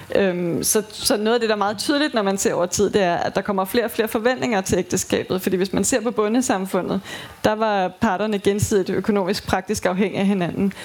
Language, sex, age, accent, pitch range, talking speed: Danish, female, 20-39, native, 190-220 Hz, 220 wpm